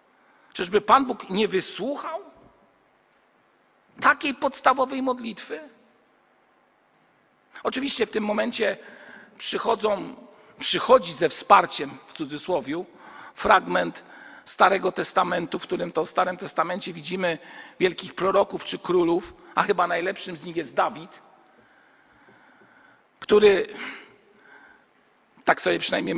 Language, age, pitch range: Polish, 50-69, 185-275 Hz